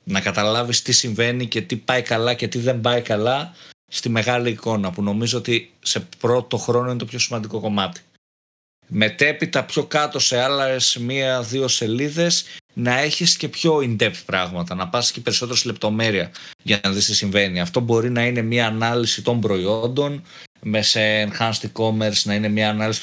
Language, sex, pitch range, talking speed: Greek, male, 110-150 Hz, 175 wpm